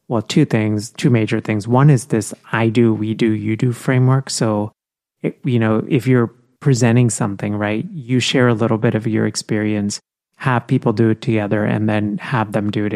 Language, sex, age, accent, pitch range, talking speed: English, male, 30-49, American, 110-130 Hz, 200 wpm